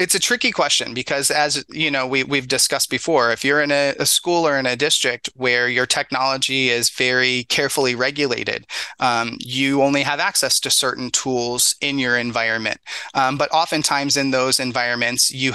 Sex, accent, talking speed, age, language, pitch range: male, American, 180 wpm, 30-49, English, 125-145 Hz